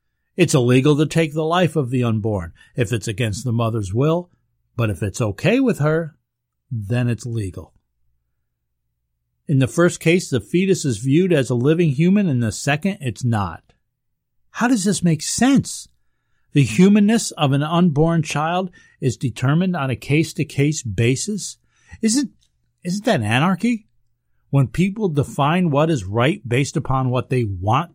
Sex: male